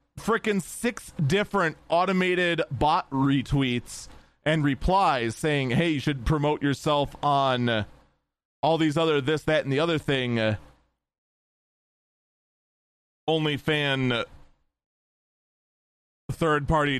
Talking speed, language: 100 wpm, English